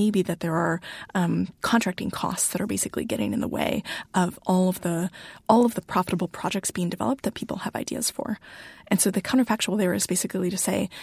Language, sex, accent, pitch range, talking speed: English, female, American, 180-225 Hz, 205 wpm